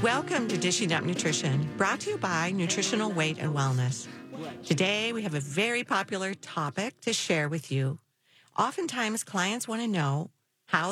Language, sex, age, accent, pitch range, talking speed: English, female, 50-69, American, 150-195 Hz, 165 wpm